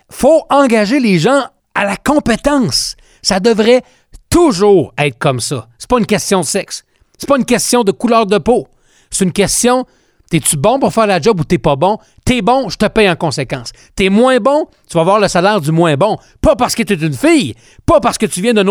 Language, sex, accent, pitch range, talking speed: French, male, Canadian, 155-230 Hz, 230 wpm